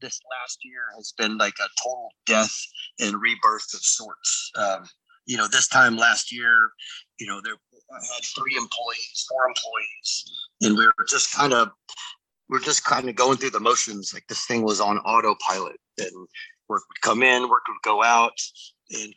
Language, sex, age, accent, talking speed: English, male, 30-49, American, 180 wpm